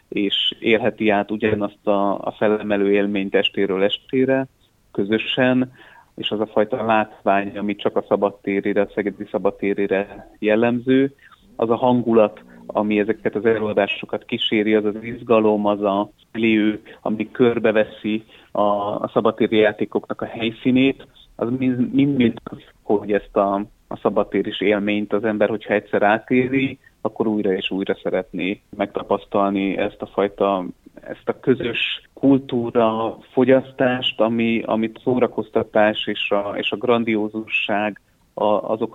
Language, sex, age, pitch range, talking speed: Hungarian, male, 30-49, 105-115 Hz, 125 wpm